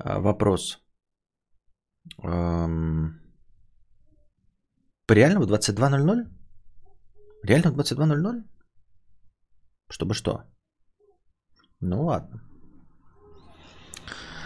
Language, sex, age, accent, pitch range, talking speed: Russian, male, 30-49, native, 90-115 Hz, 50 wpm